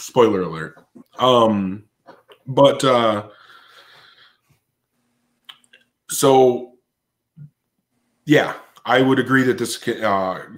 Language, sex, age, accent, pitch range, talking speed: English, male, 20-39, American, 100-120 Hz, 75 wpm